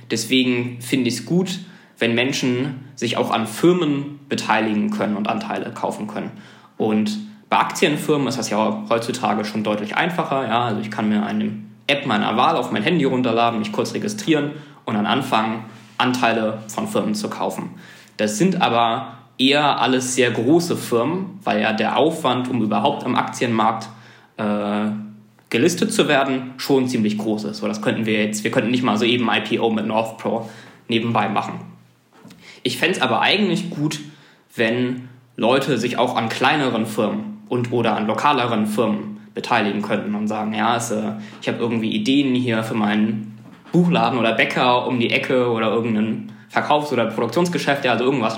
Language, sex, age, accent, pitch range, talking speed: German, male, 20-39, German, 110-135 Hz, 170 wpm